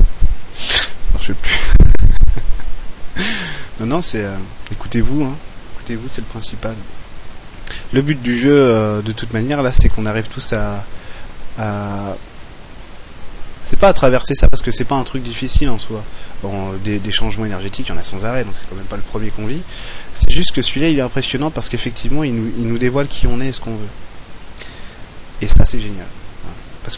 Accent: French